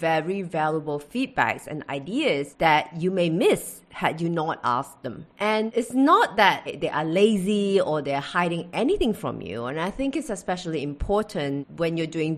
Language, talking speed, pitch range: English, 175 wpm, 150-205 Hz